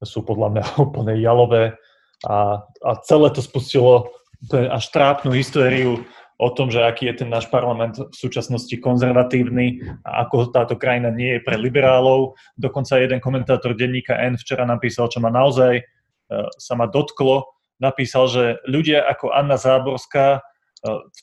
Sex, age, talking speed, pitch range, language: male, 20-39, 145 wpm, 120-135 Hz, Slovak